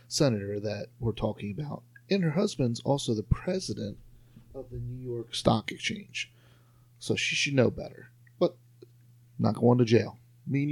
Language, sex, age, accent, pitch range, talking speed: English, male, 30-49, American, 110-125 Hz, 155 wpm